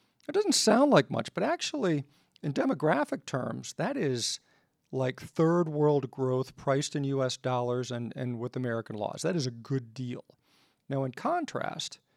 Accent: American